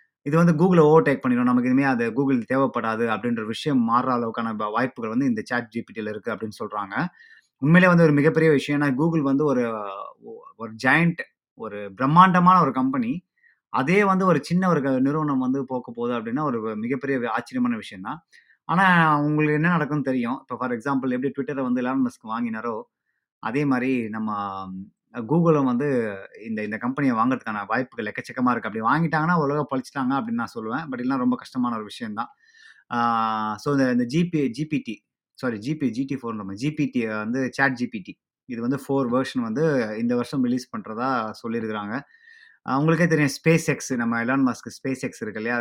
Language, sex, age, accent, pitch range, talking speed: Tamil, male, 20-39, native, 120-160 Hz, 160 wpm